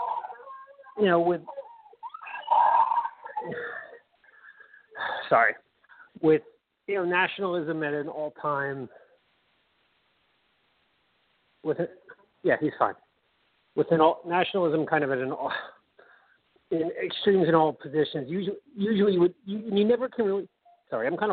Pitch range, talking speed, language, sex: 155-260 Hz, 120 wpm, English, male